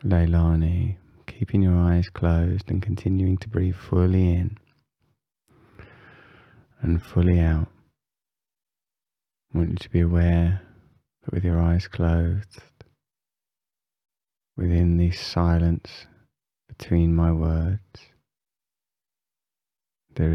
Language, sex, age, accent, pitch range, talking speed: English, male, 20-39, British, 80-95 Hz, 95 wpm